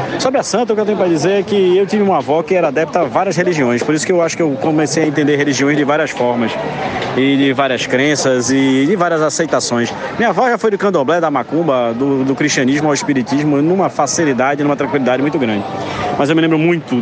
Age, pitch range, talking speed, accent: 20-39, 120-145 Hz, 235 wpm, Brazilian